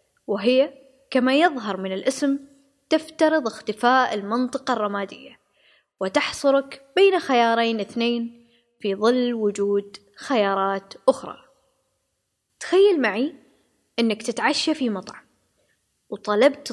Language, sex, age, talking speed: Arabic, female, 20-39, 90 wpm